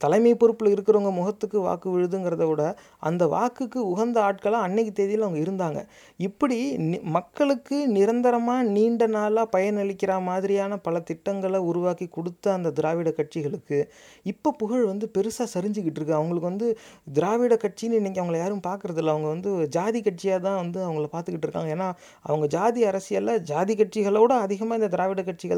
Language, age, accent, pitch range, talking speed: Tamil, 30-49, native, 165-210 Hz, 150 wpm